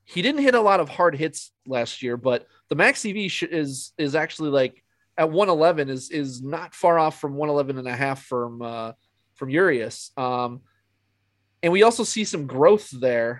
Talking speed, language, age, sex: 195 wpm, English, 30-49, male